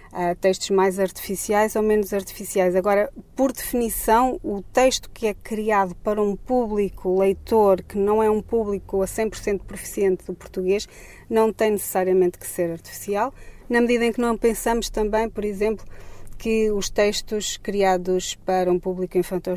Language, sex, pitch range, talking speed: Portuguese, female, 190-225 Hz, 155 wpm